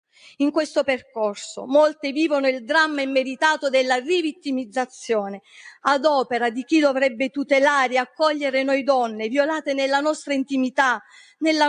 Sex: female